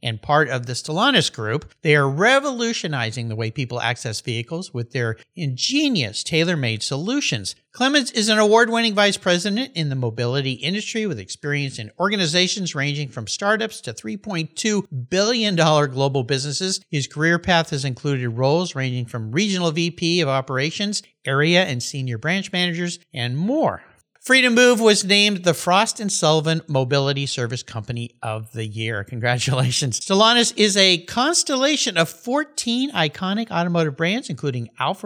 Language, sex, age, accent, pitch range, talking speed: English, male, 50-69, American, 130-200 Hz, 145 wpm